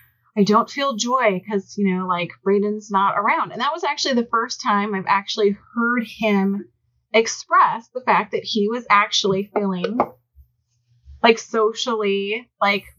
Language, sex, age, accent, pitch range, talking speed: English, female, 30-49, American, 185-225 Hz, 150 wpm